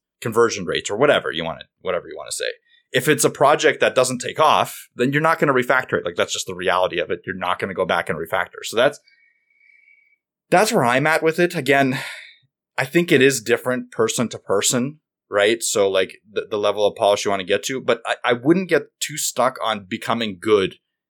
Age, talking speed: 20-39, 235 wpm